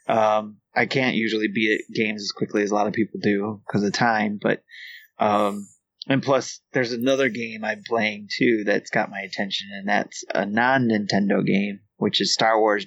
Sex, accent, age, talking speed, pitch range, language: male, American, 30-49, 185 wpm, 105-130 Hz, English